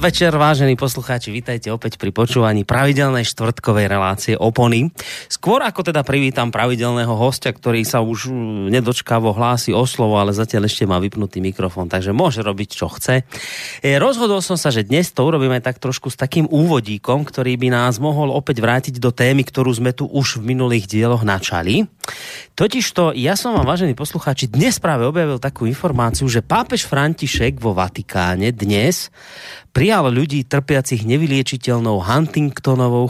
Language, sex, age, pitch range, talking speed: Slovak, male, 30-49, 115-150 Hz, 155 wpm